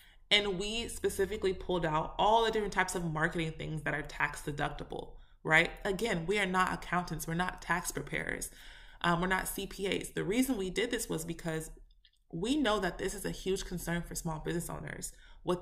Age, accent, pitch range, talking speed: 20-39, American, 170-220 Hz, 190 wpm